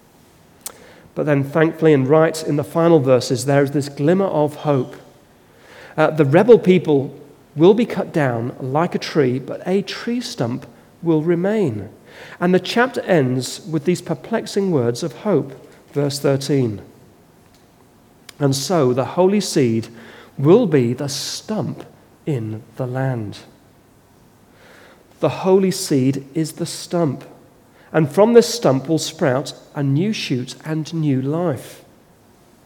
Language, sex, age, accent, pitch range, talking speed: English, male, 40-59, British, 135-175 Hz, 135 wpm